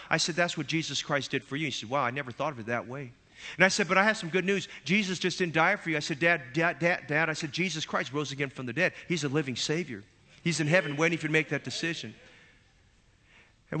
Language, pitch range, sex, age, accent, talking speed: English, 120-160 Hz, male, 40-59, American, 275 wpm